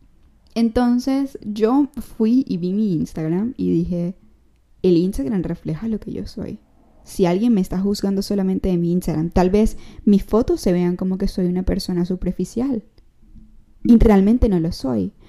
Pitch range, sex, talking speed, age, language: 175-230 Hz, female, 165 wpm, 10-29, Spanish